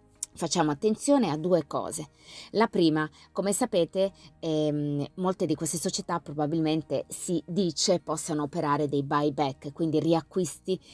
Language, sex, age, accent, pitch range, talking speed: Italian, female, 20-39, native, 145-170 Hz, 125 wpm